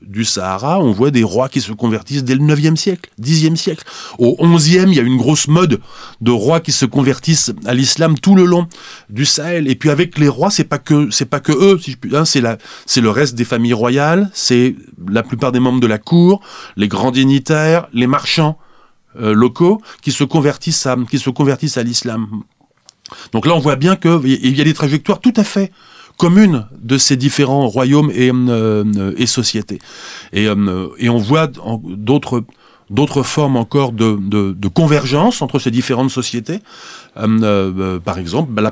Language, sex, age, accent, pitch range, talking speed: French, male, 30-49, French, 115-155 Hz, 195 wpm